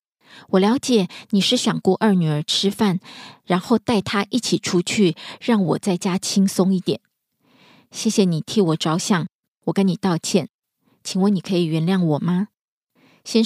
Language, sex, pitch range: Korean, female, 175-220 Hz